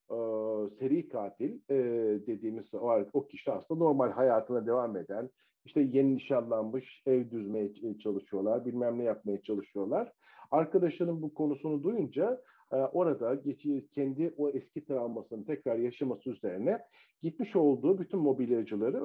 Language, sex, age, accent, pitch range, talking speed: Turkish, male, 50-69, native, 120-150 Hz, 130 wpm